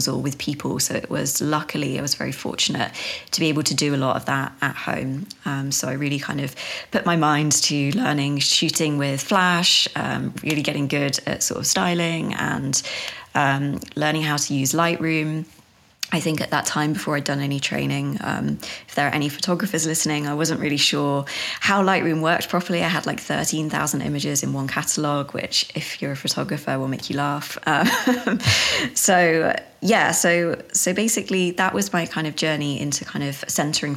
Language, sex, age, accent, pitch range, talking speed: English, female, 20-39, British, 140-170 Hz, 195 wpm